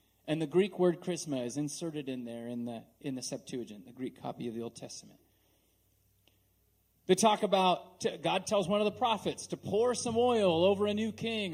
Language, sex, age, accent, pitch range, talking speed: English, male, 30-49, American, 140-200 Hz, 200 wpm